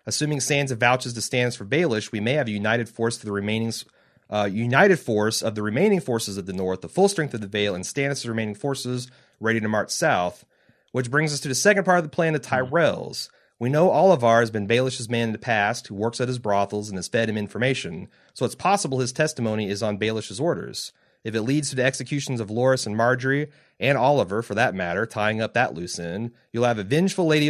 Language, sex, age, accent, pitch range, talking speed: English, male, 30-49, American, 110-140 Hz, 230 wpm